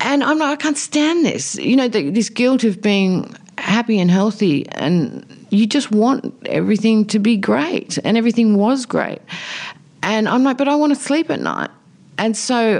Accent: Australian